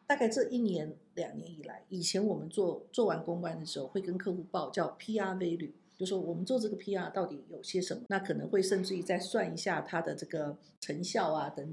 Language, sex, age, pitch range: Chinese, female, 50-69, 185-235 Hz